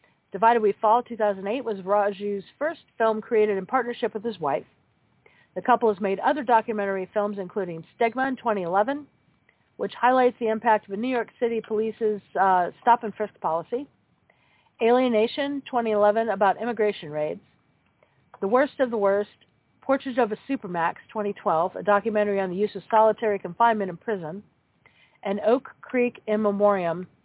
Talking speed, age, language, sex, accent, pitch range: 150 wpm, 50-69, English, female, American, 190-235 Hz